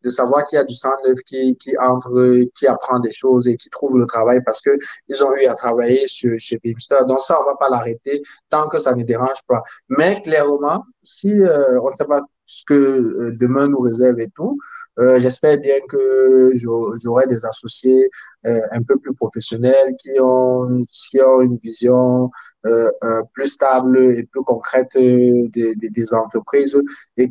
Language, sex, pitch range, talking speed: French, male, 125-140 Hz, 190 wpm